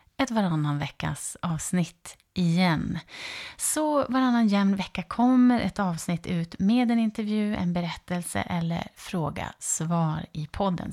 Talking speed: 125 wpm